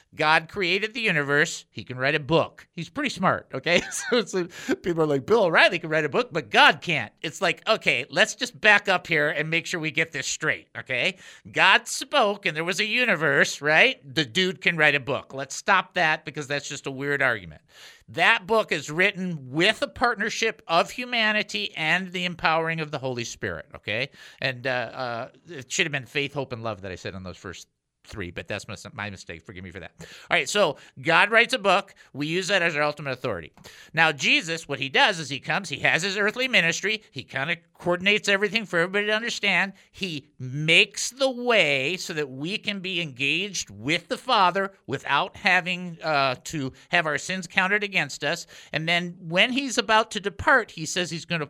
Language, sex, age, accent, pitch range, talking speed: English, male, 50-69, American, 145-200 Hz, 210 wpm